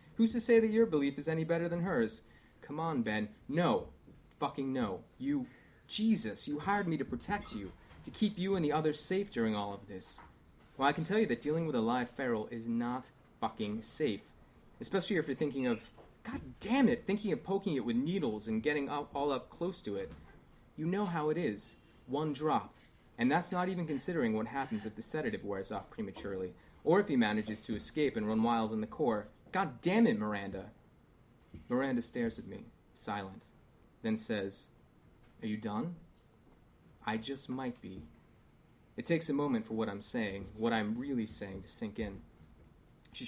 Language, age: English, 30-49